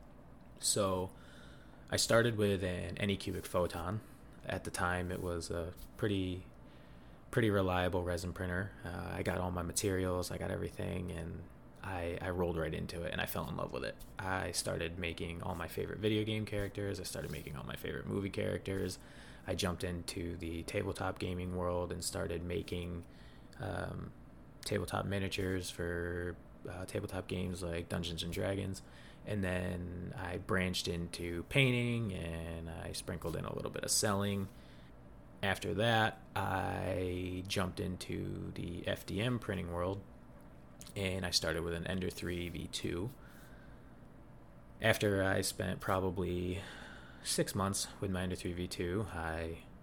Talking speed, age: 150 wpm, 20-39